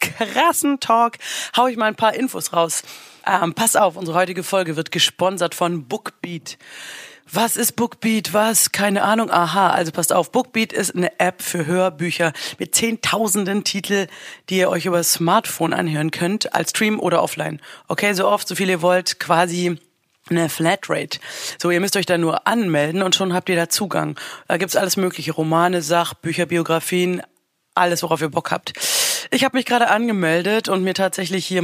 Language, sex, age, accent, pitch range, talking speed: German, female, 30-49, German, 170-205 Hz, 180 wpm